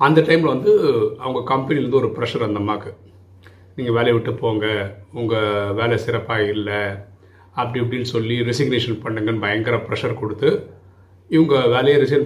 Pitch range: 100-135 Hz